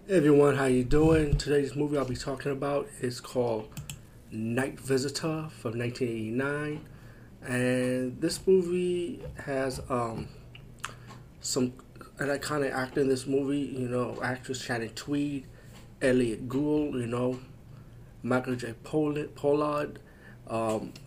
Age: 30-49